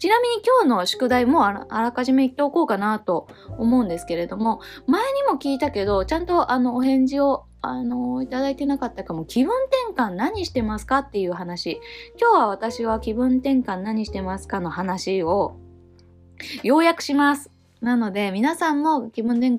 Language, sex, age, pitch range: Japanese, female, 20-39, 175-260 Hz